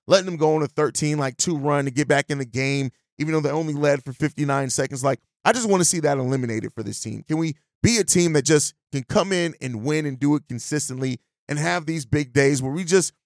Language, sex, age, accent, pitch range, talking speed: English, male, 30-49, American, 135-160 Hz, 260 wpm